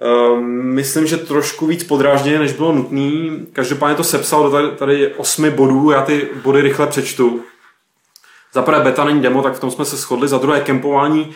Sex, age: male, 20-39